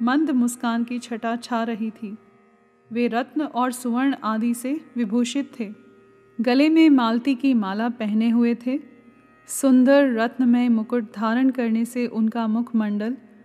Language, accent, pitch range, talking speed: Hindi, native, 220-260 Hz, 145 wpm